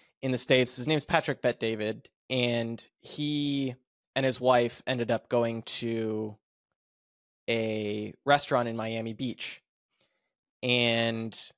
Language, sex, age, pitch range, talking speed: English, male, 20-39, 115-135 Hz, 120 wpm